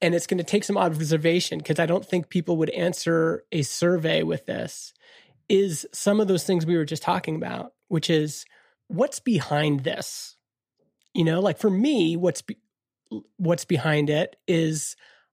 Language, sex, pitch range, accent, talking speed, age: English, male, 160-195 Hz, American, 170 wpm, 30-49